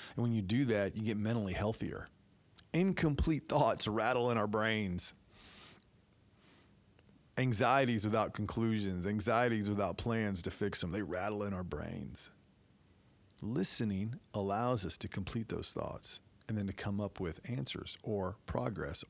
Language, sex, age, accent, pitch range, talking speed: English, male, 40-59, American, 100-115 Hz, 140 wpm